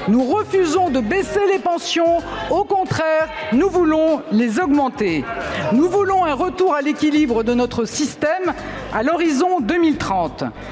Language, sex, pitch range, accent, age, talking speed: French, female, 255-335 Hz, French, 50-69, 135 wpm